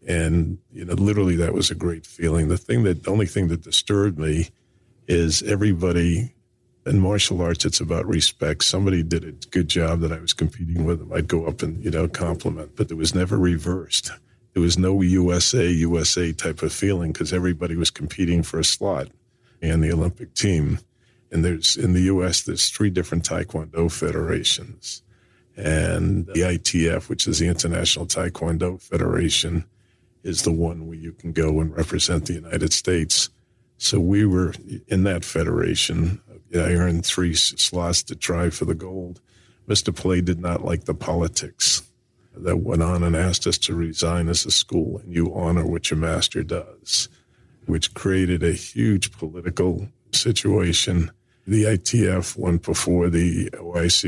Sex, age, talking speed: male, 50-69, 170 wpm